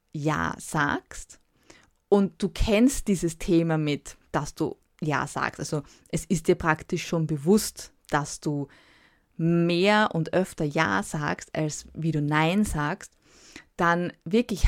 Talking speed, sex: 135 wpm, female